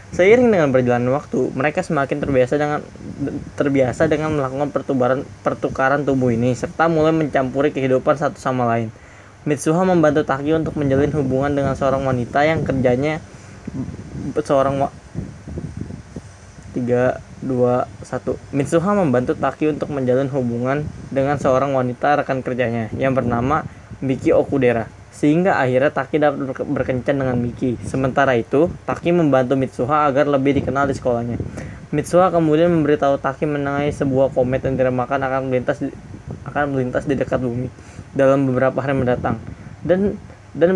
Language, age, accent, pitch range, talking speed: Indonesian, 20-39, native, 125-145 Hz, 135 wpm